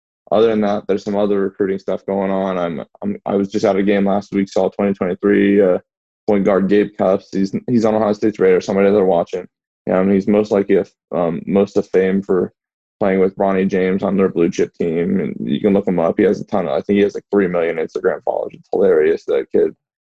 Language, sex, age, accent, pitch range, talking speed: English, male, 20-39, American, 95-100 Hz, 250 wpm